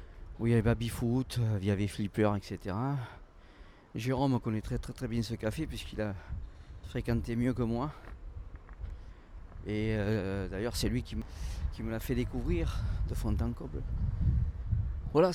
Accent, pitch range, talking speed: French, 90-125 Hz, 160 wpm